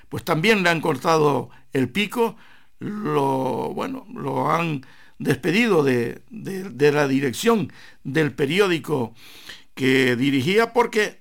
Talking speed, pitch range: 105 wpm, 145-185 Hz